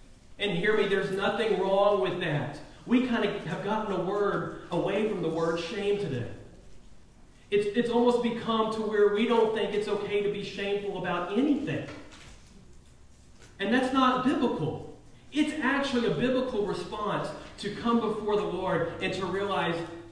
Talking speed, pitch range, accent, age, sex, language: 160 wpm, 120-205 Hz, American, 40-59, male, English